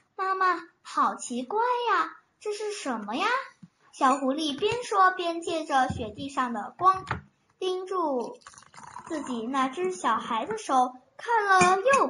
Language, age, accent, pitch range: Chinese, 10-29, native, 265-385 Hz